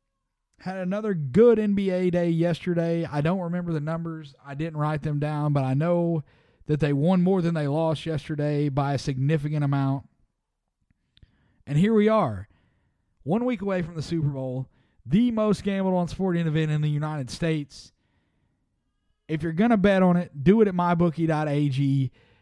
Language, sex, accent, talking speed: English, male, American, 170 wpm